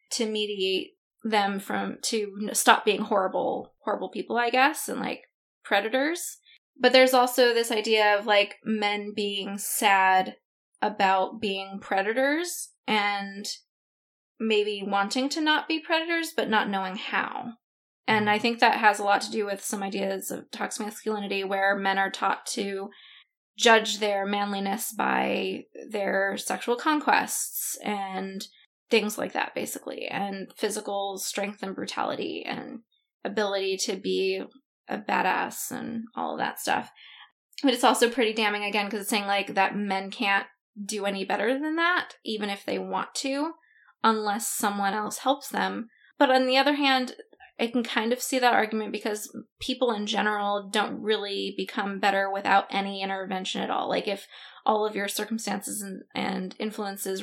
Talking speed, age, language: 155 wpm, 20-39, English